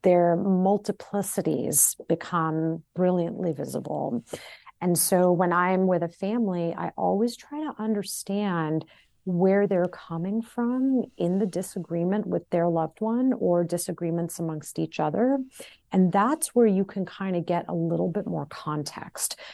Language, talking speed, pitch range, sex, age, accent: English, 140 wpm, 170-205 Hz, female, 40-59, American